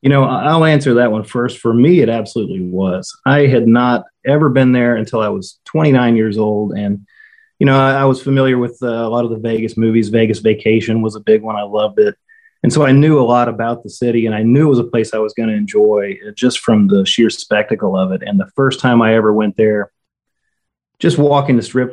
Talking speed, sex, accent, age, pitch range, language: 240 wpm, male, American, 30-49, 110-125 Hz, English